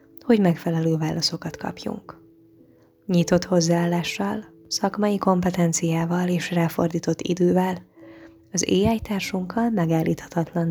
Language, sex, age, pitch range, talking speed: Hungarian, female, 20-39, 160-180 Hz, 80 wpm